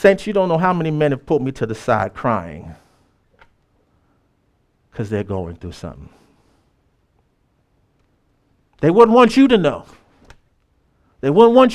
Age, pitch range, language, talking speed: 50-69, 110-160 Hz, English, 145 wpm